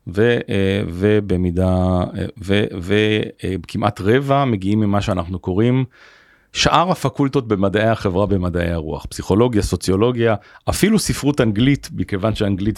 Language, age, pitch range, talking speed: Hebrew, 40-59, 95-125 Hz, 100 wpm